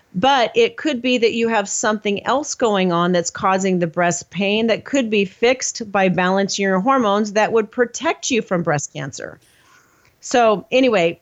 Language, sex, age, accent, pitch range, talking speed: English, female, 40-59, American, 185-235 Hz, 175 wpm